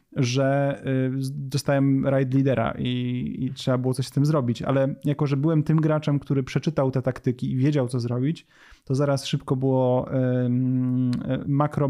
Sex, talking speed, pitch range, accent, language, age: male, 155 wpm, 130-150 Hz, native, Polish, 30-49